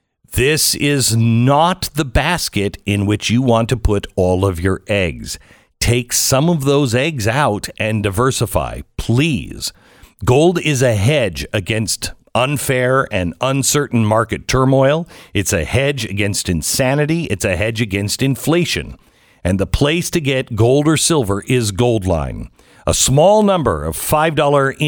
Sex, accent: male, American